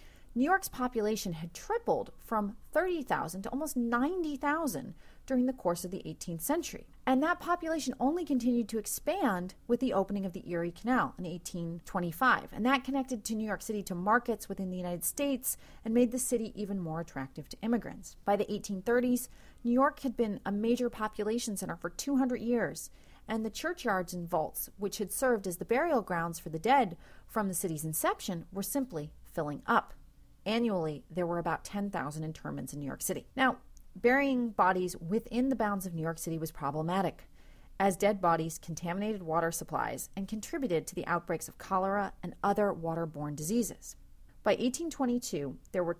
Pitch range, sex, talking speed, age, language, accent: 175-245 Hz, female, 175 wpm, 30-49, English, American